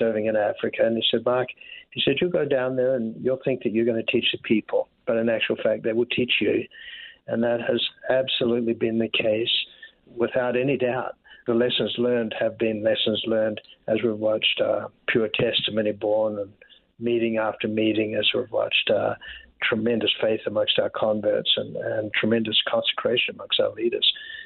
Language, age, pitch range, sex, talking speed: English, 60-79, 115-155 Hz, male, 185 wpm